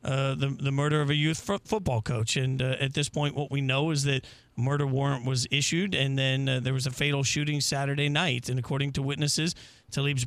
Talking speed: 235 wpm